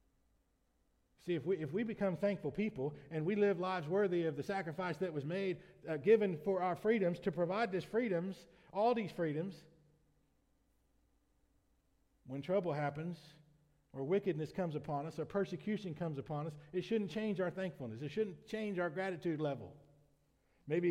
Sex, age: male, 40-59